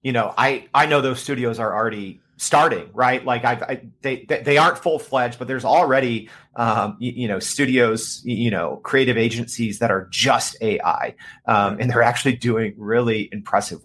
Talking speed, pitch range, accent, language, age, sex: 180 wpm, 115-145 Hz, American, English, 30-49, male